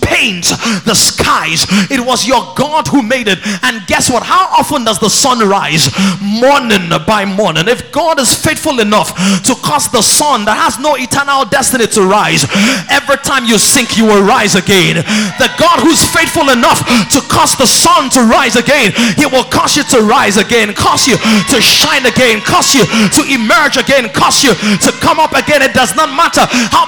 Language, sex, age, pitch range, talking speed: English, male, 30-49, 225-310 Hz, 190 wpm